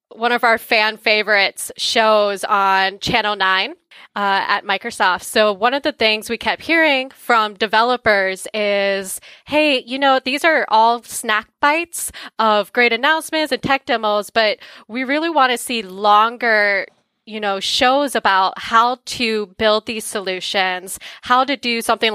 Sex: female